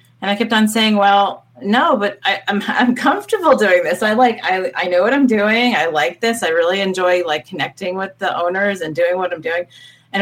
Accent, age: American, 30-49